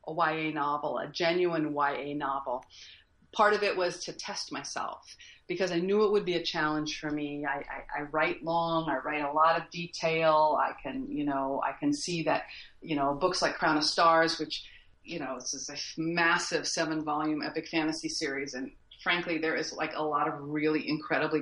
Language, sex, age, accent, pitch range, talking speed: English, female, 40-59, American, 150-190 Hz, 200 wpm